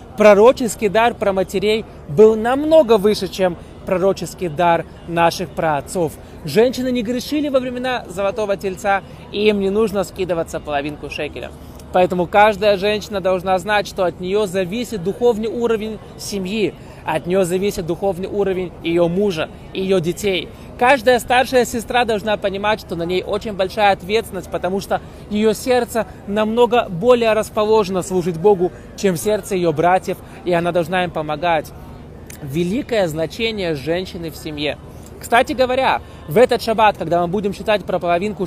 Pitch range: 175-215 Hz